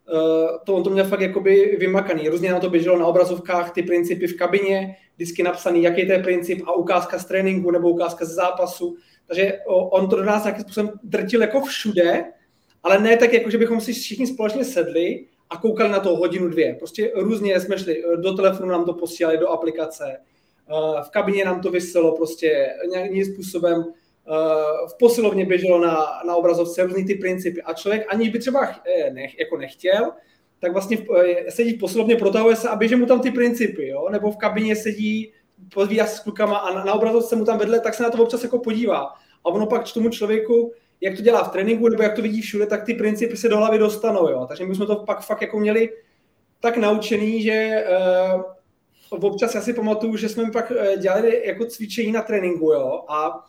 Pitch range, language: 175-220 Hz, Czech